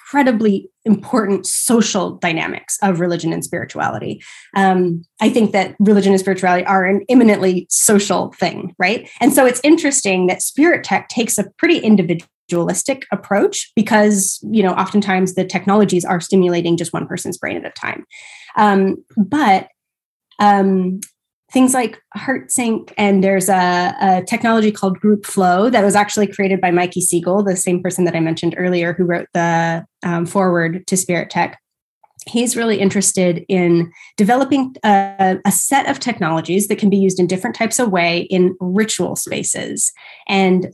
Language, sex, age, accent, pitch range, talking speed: English, female, 20-39, American, 180-215 Hz, 160 wpm